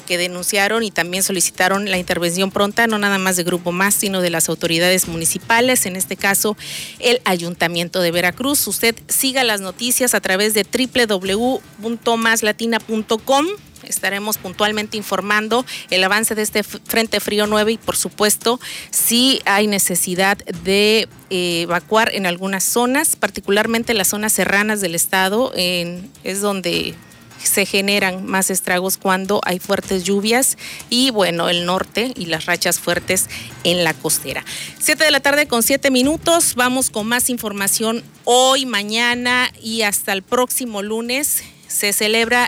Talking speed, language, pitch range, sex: 150 wpm, Spanish, 190-235 Hz, female